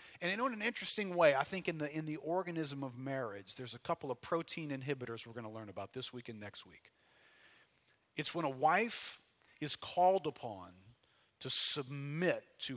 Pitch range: 125-165 Hz